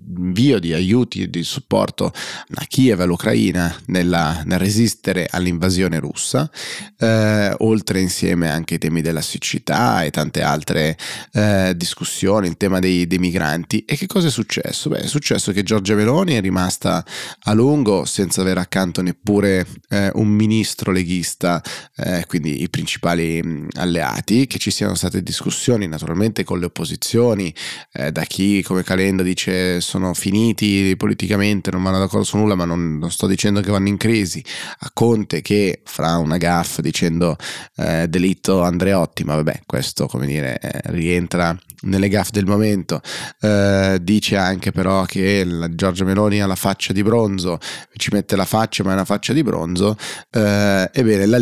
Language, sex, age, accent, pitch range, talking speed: Italian, male, 30-49, native, 90-105 Hz, 165 wpm